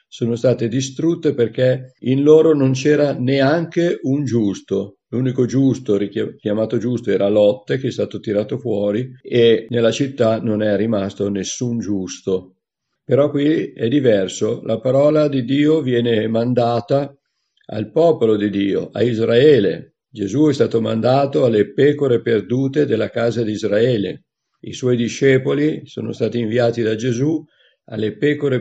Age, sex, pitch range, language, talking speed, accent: 50-69, male, 110-135 Hz, Italian, 140 wpm, native